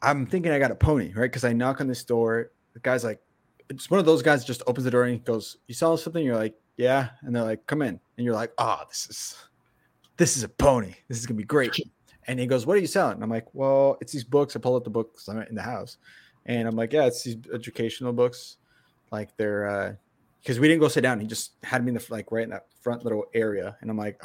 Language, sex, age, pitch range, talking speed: English, male, 20-39, 110-130 Hz, 270 wpm